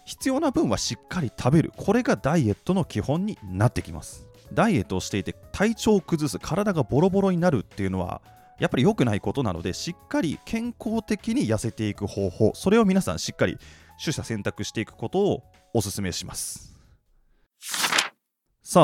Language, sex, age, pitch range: Japanese, male, 20-39, 100-155 Hz